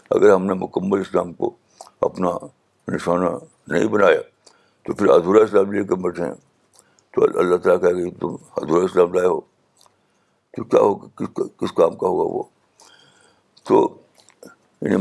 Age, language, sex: 60-79, Urdu, male